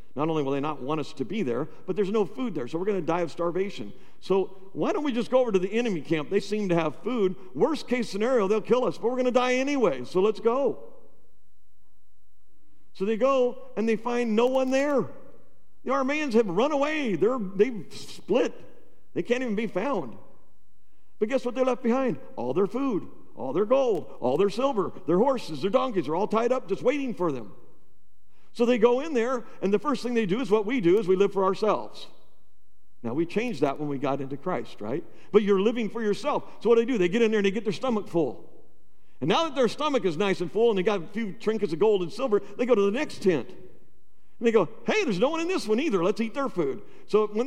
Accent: American